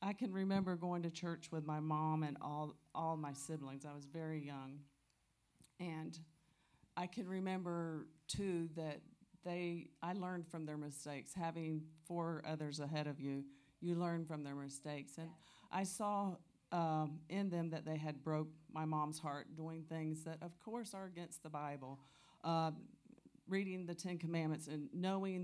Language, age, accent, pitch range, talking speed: English, 40-59, American, 155-185 Hz, 165 wpm